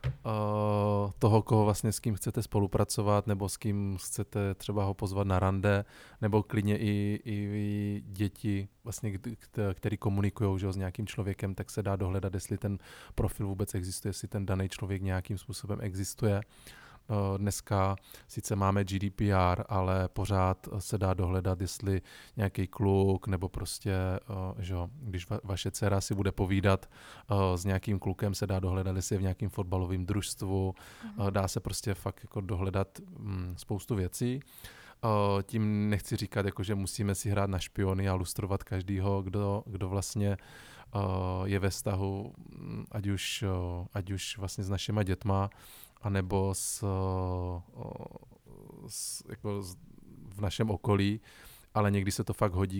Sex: male